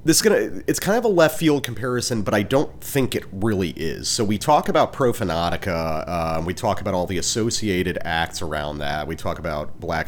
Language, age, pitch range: English, 30-49, 85-105 Hz